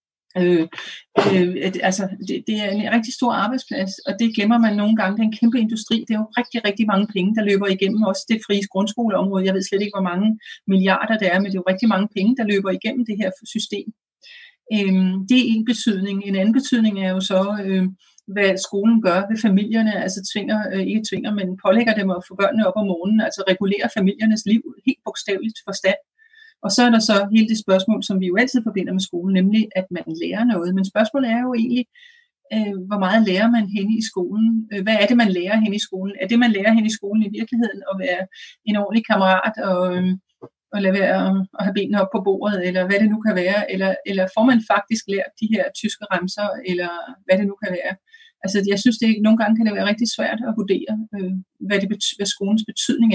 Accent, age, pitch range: native, 40-59, 190-225 Hz